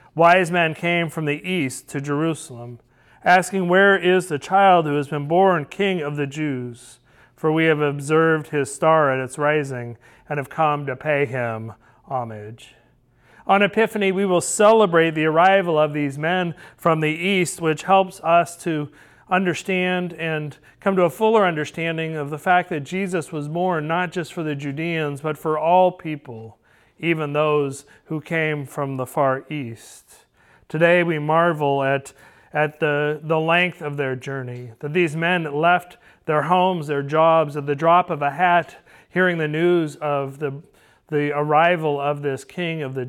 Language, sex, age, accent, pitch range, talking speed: English, male, 40-59, American, 140-170 Hz, 170 wpm